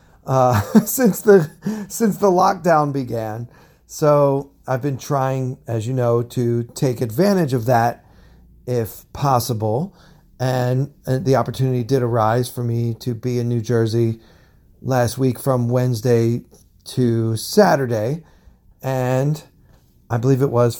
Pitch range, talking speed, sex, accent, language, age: 115-135 Hz, 125 wpm, male, American, English, 40-59